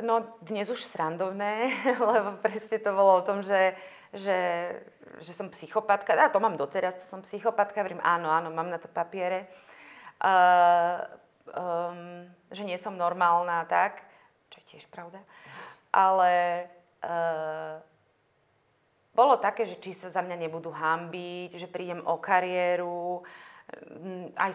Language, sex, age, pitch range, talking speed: Slovak, female, 30-49, 175-205 Hz, 135 wpm